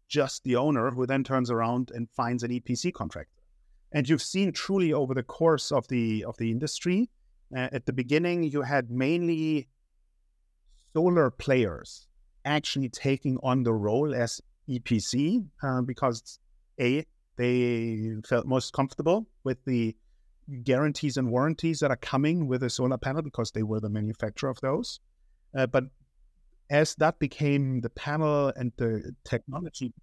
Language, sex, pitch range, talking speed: English, male, 115-140 Hz, 150 wpm